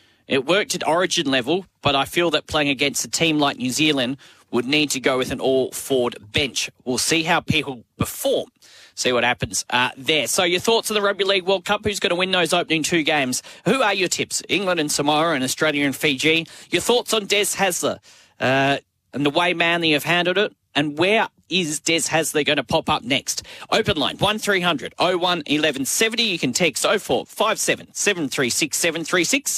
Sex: male